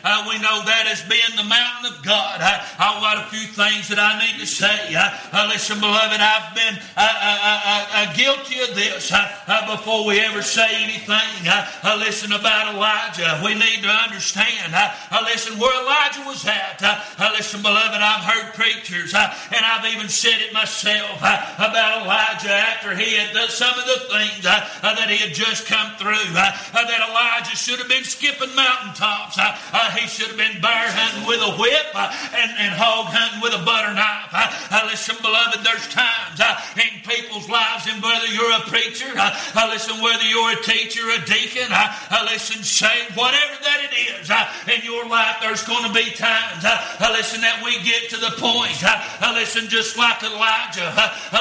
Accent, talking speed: American, 220 wpm